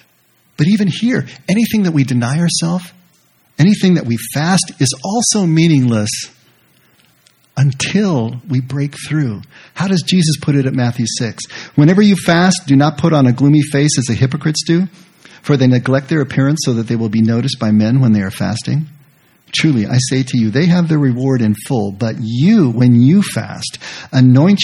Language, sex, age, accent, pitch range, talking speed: English, male, 50-69, American, 120-150 Hz, 185 wpm